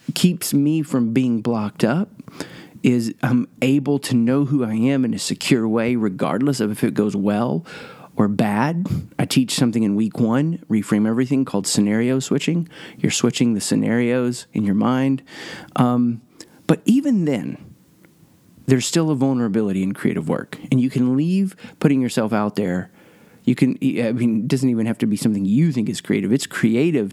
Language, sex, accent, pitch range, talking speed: English, male, American, 110-135 Hz, 175 wpm